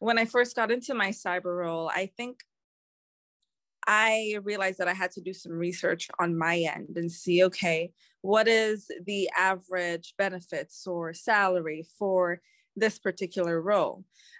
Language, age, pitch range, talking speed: English, 20-39, 175-225 Hz, 150 wpm